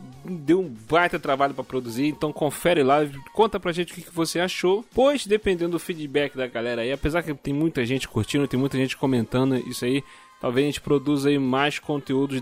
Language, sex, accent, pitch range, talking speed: Portuguese, male, Brazilian, 135-175 Hz, 205 wpm